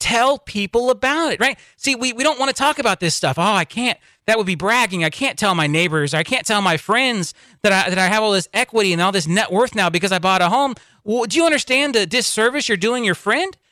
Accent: American